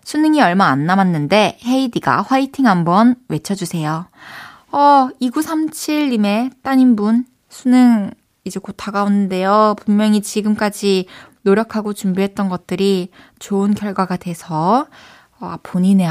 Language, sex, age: Korean, female, 20-39